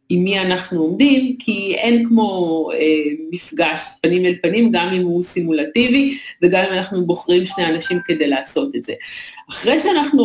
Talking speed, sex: 165 wpm, female